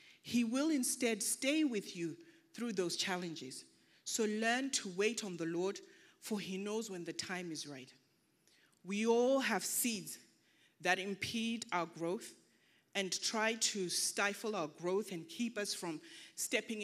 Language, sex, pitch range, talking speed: English, female, 175-230 Hz, 155 wpm